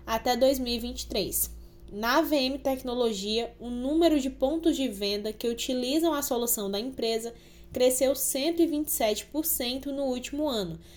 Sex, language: female, Portuguese